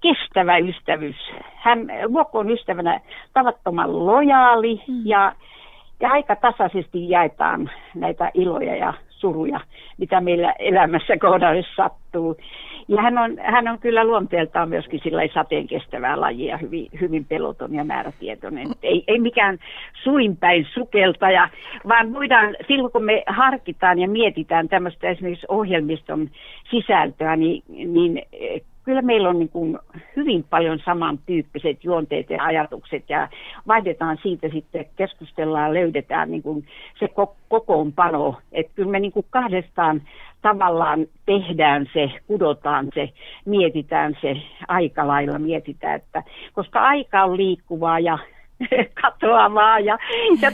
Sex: female